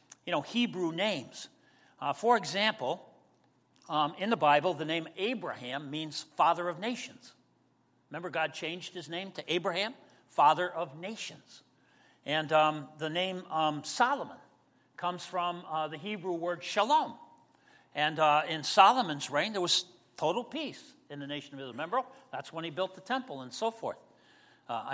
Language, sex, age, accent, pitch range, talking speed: English, male, 60-79, American, 150-230 Hz, 160 wpm